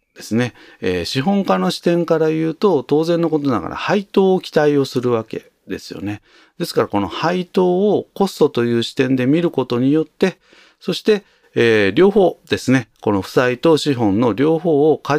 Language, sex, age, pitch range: Japanese, male, 40-59, 95-160 Hz